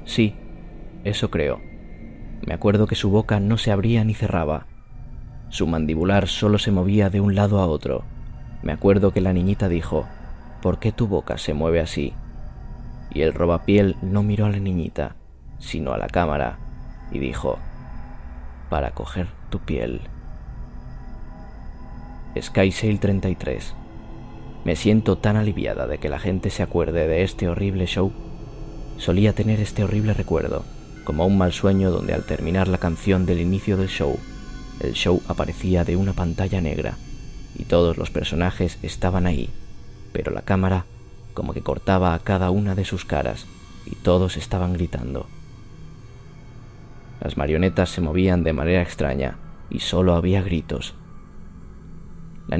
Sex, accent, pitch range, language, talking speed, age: male, Spanish, 80-100 Hz, Spanish, 145 wpm, 20-39